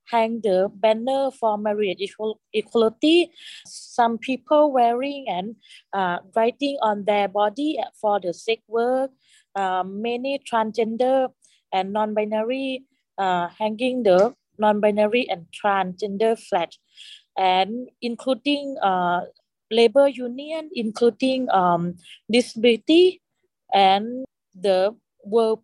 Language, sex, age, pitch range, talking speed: English, female, 20-39, 200-250 Hz, 100 wpm